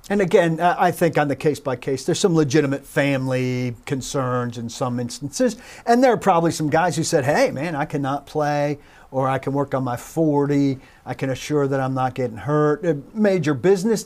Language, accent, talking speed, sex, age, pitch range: English, American, 205 wpm, male, 40-59, 135-180 Hz